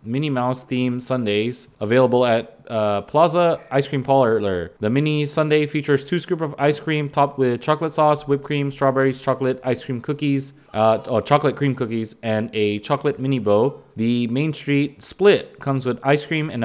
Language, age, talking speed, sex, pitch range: English, 20-39, 180 wpm, male, 120-145 Hz